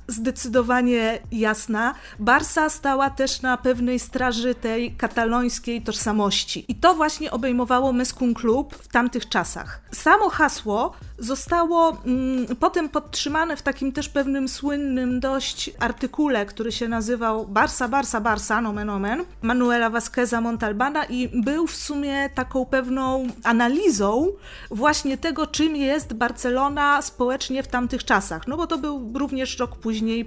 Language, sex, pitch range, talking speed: Polish, female, 225-300 Hz, 135 wpm